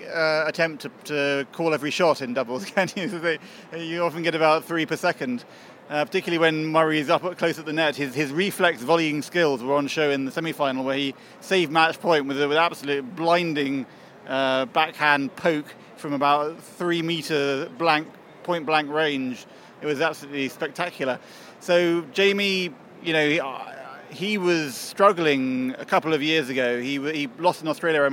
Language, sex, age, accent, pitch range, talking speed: English, male, 30-49, British, 140-170 Hz, 180 wpm